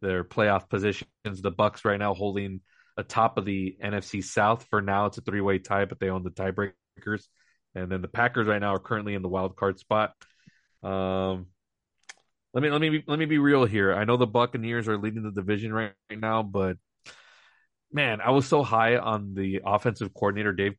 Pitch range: 95-120 Hz